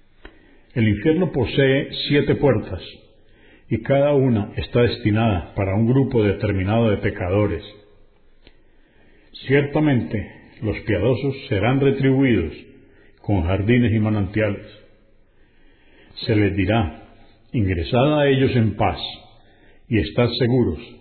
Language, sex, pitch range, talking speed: Spanish, male, 100-125 Hz, 105 wpm